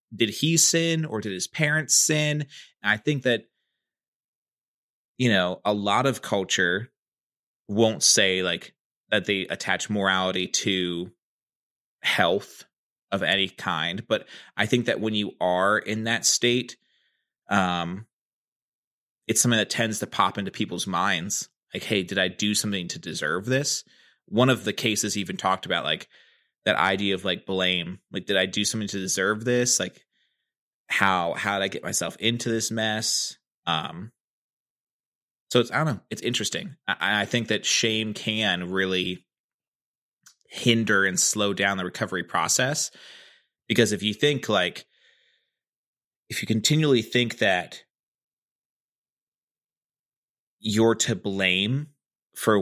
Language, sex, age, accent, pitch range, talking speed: English, male, 20-39, American, 95-125 Hz, 145 wpm